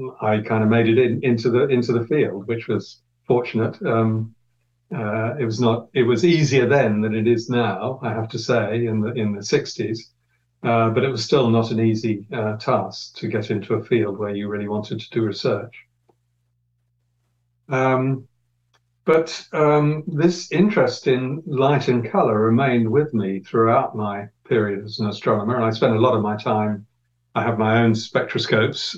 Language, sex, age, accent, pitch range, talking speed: English, male, 50-69, British, 110-125 Hz, 185 wpm